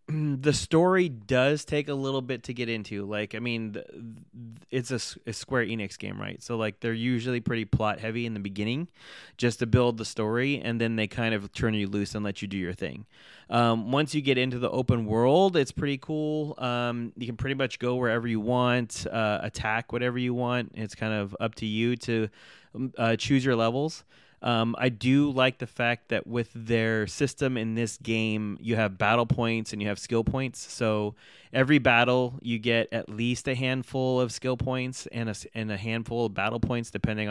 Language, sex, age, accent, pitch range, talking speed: English, male, 20-39, American, 110-130 Hz, 205 wpm